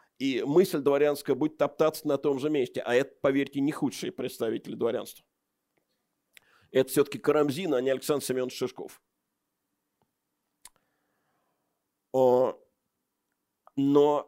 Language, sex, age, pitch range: Russian, male, 50-69, 140-225 Hz